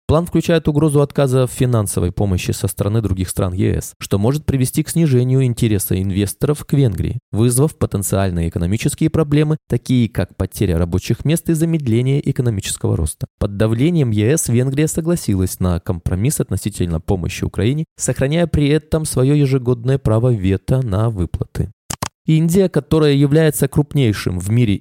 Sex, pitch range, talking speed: male, 105-150 Hz, 145 wpm